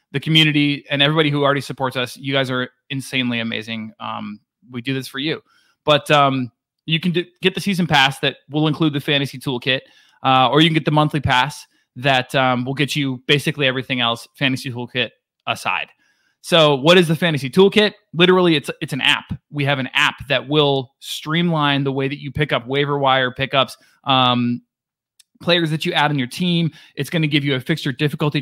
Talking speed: 205 wpm